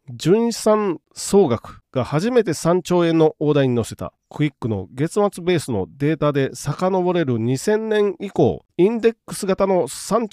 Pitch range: 115-185 Hz